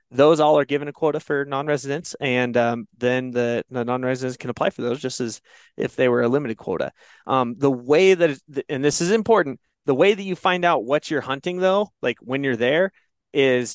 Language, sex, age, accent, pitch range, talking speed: English, male, 20-39, American, 120-150 Hz, 220 wpm